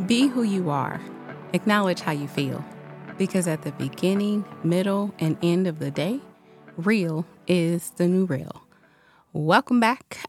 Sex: female